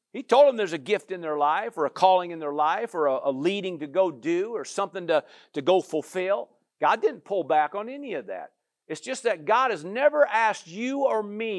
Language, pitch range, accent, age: English, 150-230 Hz, American, 50-69